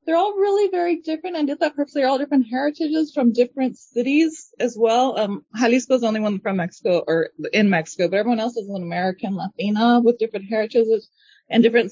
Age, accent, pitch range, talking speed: 20-39, American, 180-240 Hz, 205 wpm